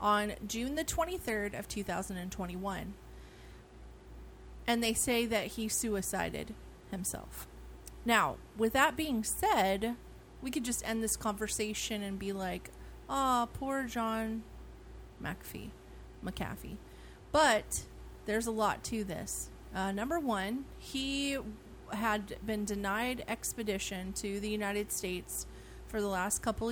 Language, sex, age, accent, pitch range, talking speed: English, female, 30-49, American, 200-245 Hz, 120 wpm